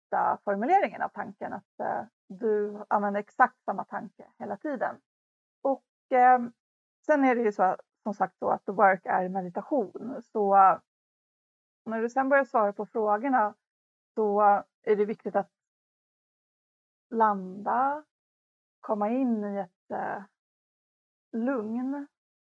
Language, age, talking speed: Swedish, 30-49, 125 wpm